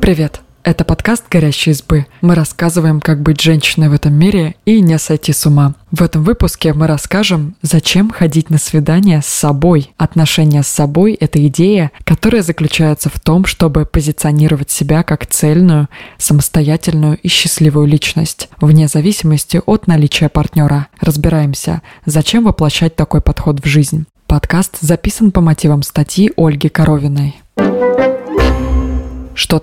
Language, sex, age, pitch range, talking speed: Russian, female, 20-39, 150-170 Hz, 135 wpm